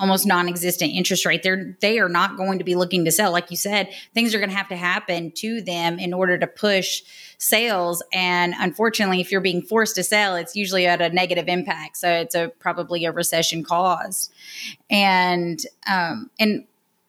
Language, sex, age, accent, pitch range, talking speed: English, female, 30-49, American, 175-200 Hz, 190 wpm